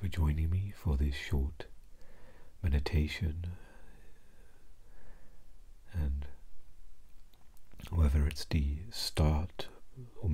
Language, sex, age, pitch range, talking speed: English, male, 60-79, 75-90 Hz, 70 wpm